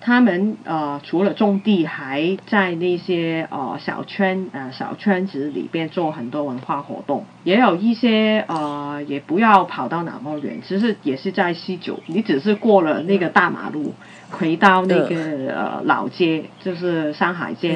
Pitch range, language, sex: 155-195 Hz, Chinese, female